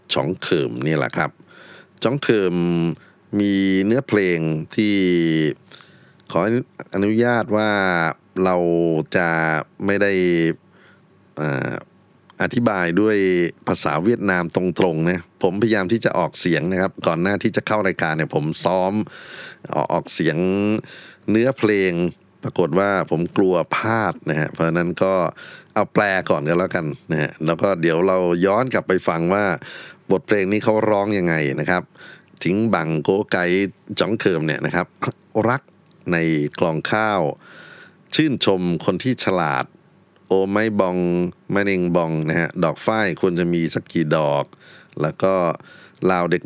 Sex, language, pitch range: male, Thai, 85-105 Hz